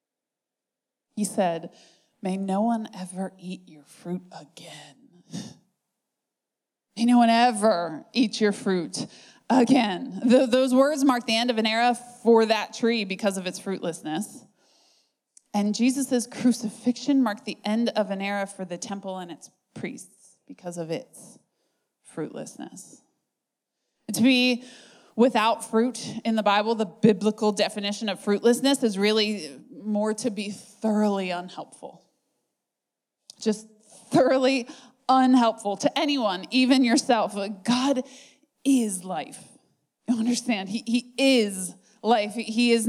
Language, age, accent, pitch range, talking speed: English, 20-39, American, 200-245 Hz, 125 wpm